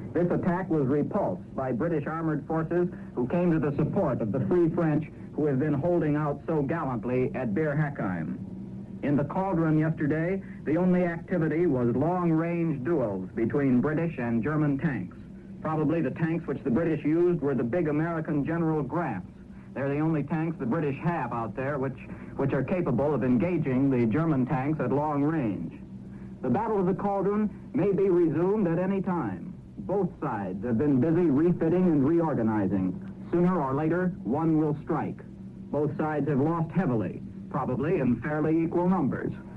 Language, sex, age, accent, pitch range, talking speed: English, male, 60-79, American, 140-175 Hz, 170 wpm